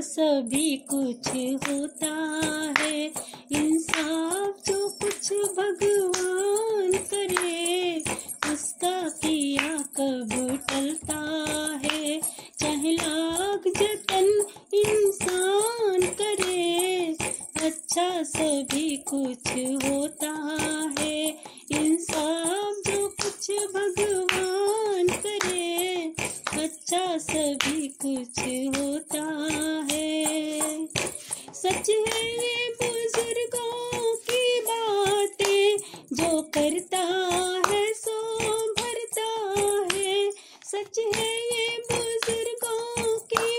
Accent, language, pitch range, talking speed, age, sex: native, Hindi, 305-410 Hz, 65 wpm, 30-49, female